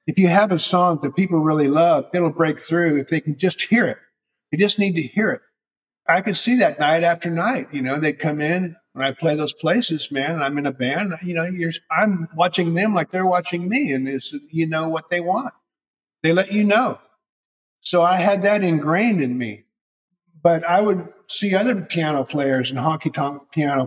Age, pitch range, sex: 50-69, 135-180 Hz, male